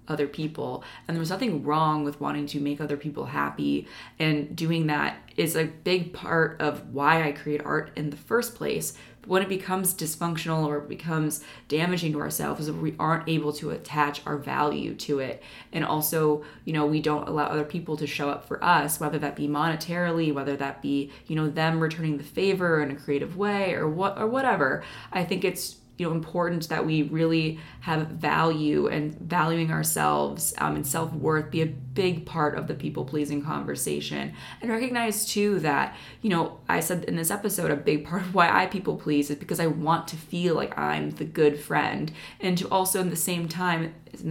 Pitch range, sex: 150-175 Hz, female